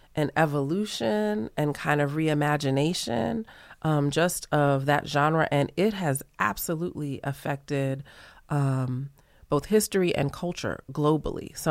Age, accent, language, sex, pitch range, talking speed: 30-49, American, English, female, 130-155 Hz, 120 wpm